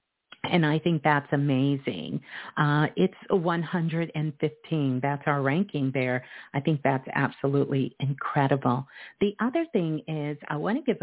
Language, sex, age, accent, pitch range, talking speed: English, female, 50-69, American, 150-185 Hz, 135 wpm